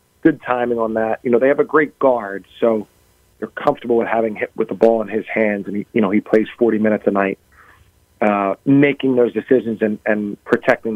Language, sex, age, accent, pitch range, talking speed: English, male, 40-59, American, 105-125 Hz, 220 wpm